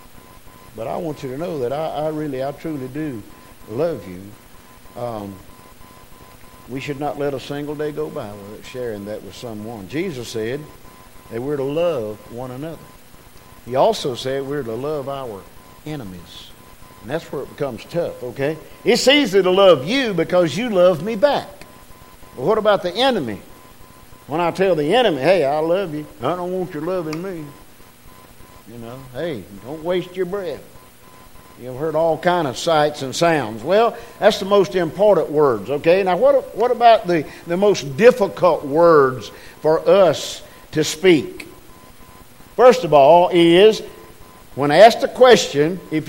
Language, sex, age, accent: English, male, 50-69, American